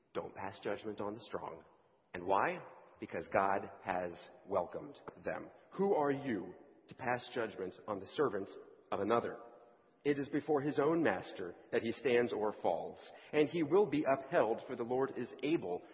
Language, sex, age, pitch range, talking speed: English, male, 40-59, 115-165 Hz, 170 wpm